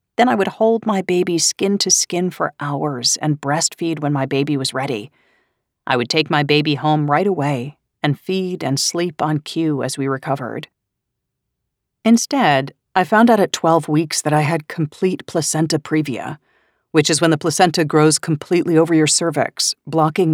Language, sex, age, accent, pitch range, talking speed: English, female, 40-59, American, 145-175 Hz, 170 wpm